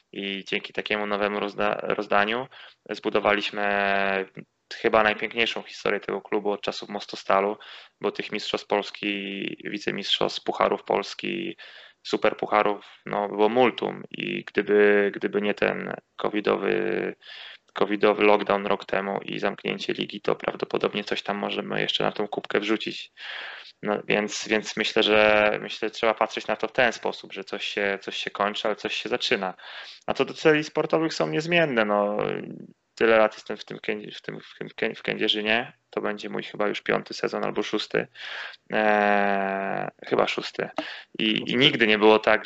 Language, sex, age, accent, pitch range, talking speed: Polish, male, 20-39, native, 100-110 Hz, 160 wpm